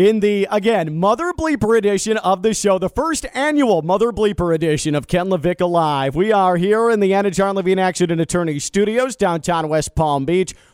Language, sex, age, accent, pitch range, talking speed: English, male, 40-59, American, 145-205 Hz, 190 wpm